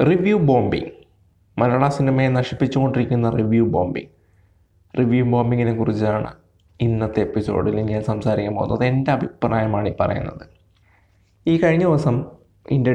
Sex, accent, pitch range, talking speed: male, native, 110-135 Hz, 105 wpm